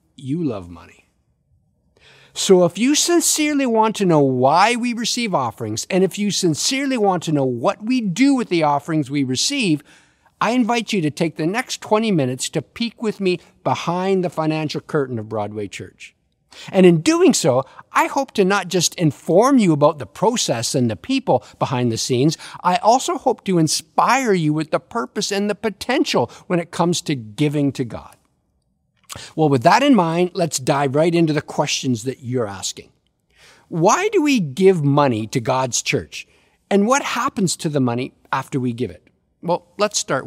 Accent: American